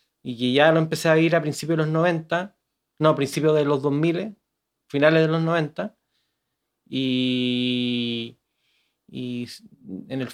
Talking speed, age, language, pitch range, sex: 150 wpm, 30-49, Spanish, 130-160 Hz, male